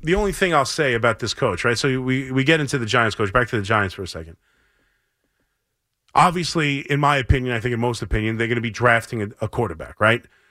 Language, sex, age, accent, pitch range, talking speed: English, male, 30-49, American, 110-140 Hz, 235 wpm